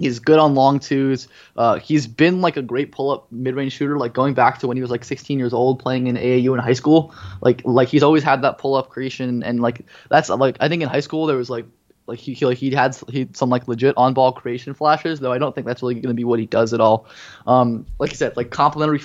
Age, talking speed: 20-39, 270 wpm